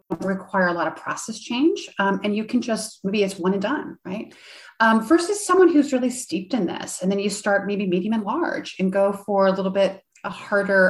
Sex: female